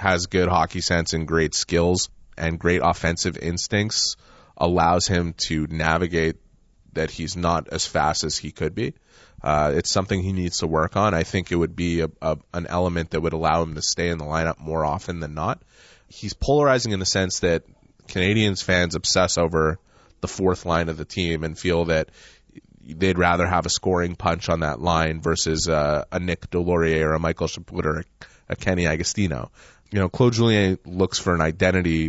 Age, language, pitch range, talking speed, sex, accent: 30-49, English, 80-90 Hz, 190 wpm, male, American